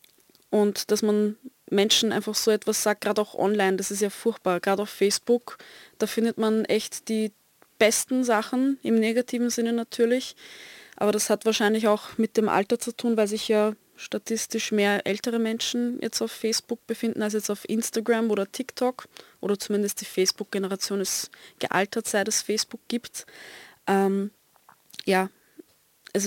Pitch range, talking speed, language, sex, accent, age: 200-225 Hz, 160 wpm, German, female, German, 20-39